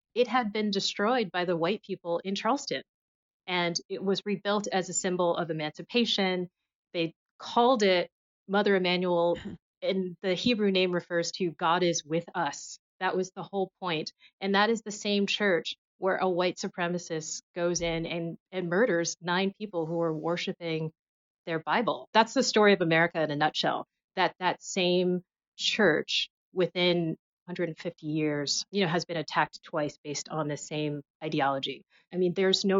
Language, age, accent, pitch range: English, 30-49, American, 165-195 Hz